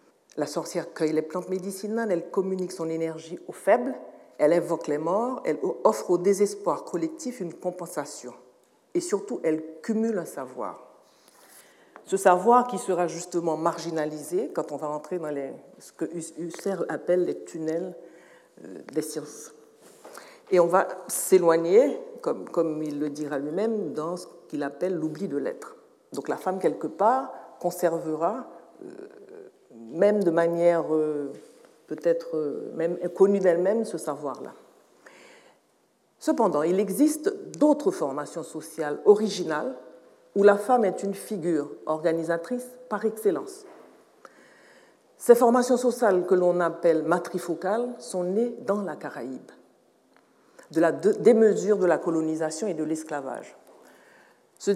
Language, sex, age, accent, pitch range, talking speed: French, female, 60-79, French, 165-225 Hz, 130 wpm